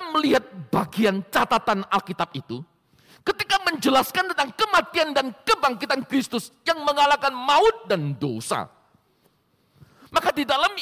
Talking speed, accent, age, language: 110 wpm, native, 50-69, Indonesian